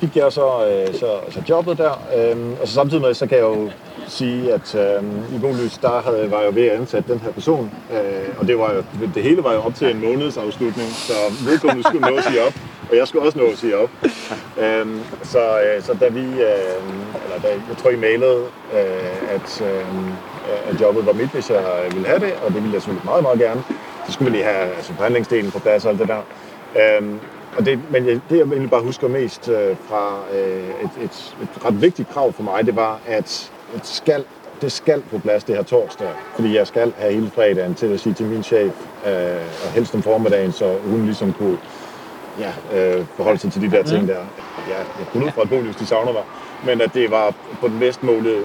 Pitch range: 105-175 Hz